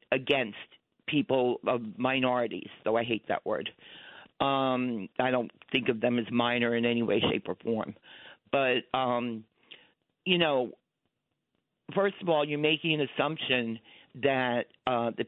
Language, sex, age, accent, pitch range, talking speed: English, male, 50-69, American, 125-150 Hz, 140 wpm